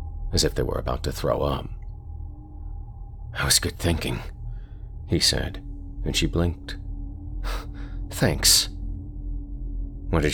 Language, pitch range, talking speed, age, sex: English, 75-95 Hz, 115 wpm, 40-59, male